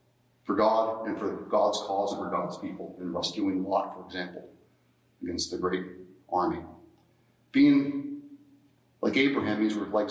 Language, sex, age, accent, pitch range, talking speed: English, male, 40-59, American, 105-150 Hz, 150 wpm